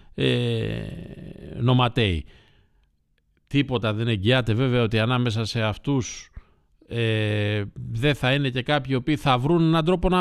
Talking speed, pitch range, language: 130 wpm, 115-175 Hz, Greek